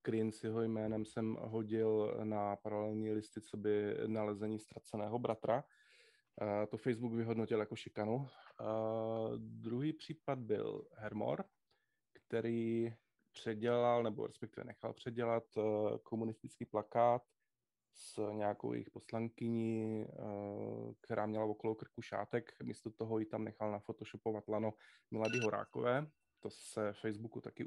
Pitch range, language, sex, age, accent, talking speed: 110-120 Hz, Czech, male, 20-39, native, 110 wpm